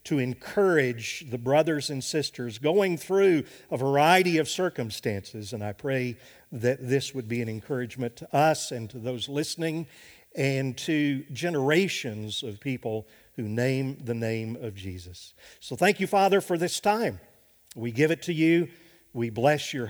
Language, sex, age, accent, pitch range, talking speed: English, male, 50-69, American, 125-165 Hz, 160 wpm